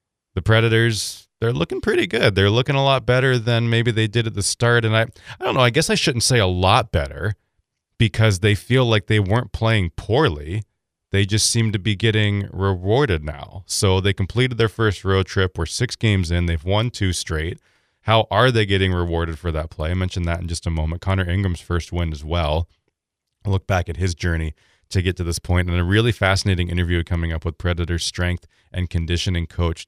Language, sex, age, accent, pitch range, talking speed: English, male, 30-49, American, 85-105 Hz, 215 wpm